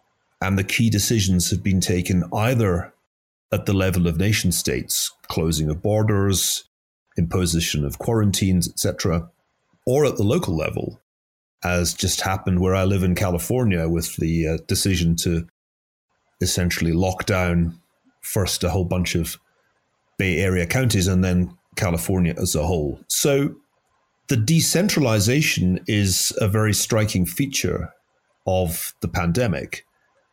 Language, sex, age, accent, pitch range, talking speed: English, male, 30-49, British, 90-110 Hz, 130 wpm